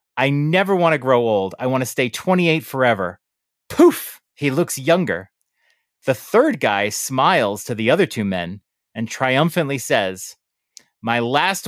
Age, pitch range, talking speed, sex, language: 30-49, 120-165 Hz, 155 wpm, male, English